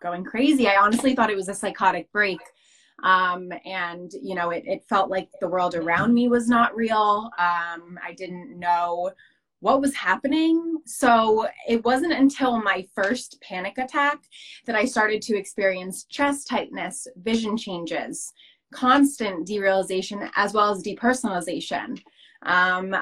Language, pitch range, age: English, 185-250 Hz, 20-39